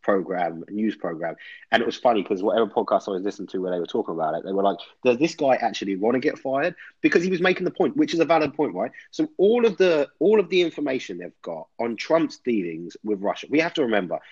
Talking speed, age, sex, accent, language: 260 wpm, 30-49, male, British, English